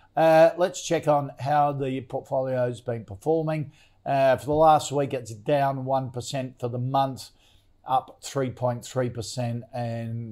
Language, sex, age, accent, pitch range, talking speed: English, male, 50-69, Australian, 120-145 Hz, 140 wpm